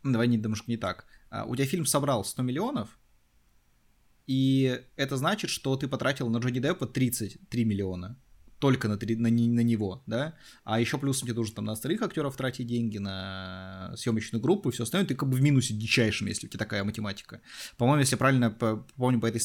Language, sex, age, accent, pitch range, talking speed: Russian, male, 20-39, native, 105-135 Hz, 195 wpm